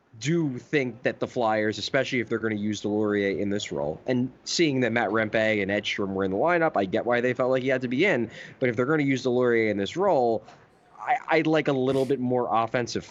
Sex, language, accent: male, English, American